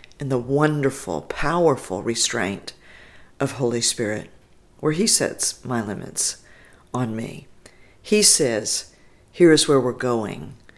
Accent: American